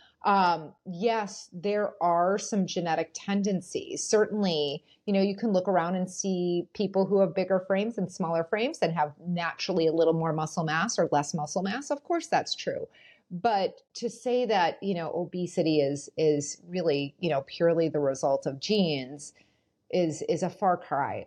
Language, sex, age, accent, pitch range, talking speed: English, female, 30-49, American, 165-215 Hz, 175 wpm